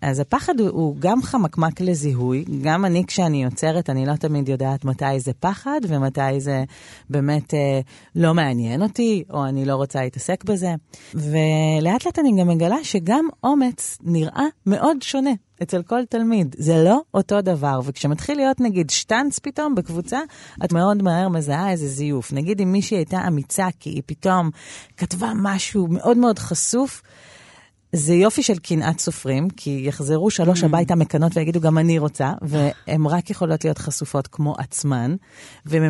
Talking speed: 155 wpm